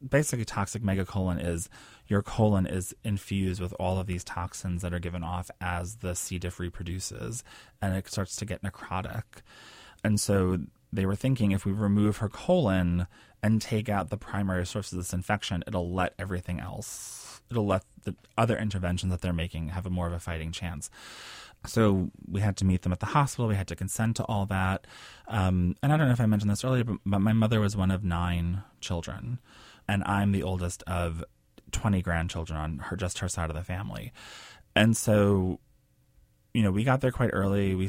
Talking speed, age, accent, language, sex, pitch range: 195 wpm, 20-39, American, English, male, 90-110 Hz